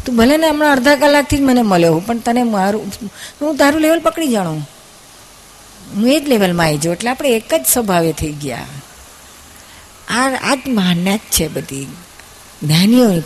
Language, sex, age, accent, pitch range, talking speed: Gujarati, female, 50-69, native, 190-255 Hz, 155 wpm